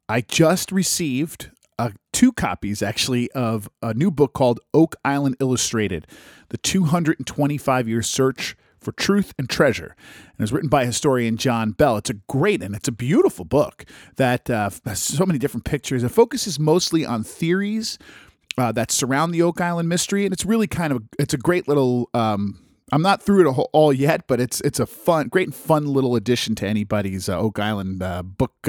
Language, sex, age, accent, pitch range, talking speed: English, male, 40-59, American, 110-155 Hz, 190 wpm